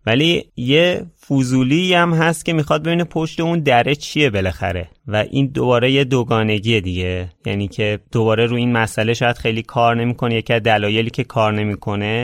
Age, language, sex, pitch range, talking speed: 30-49, Persian, male, 105-130 Hz, 170 wpm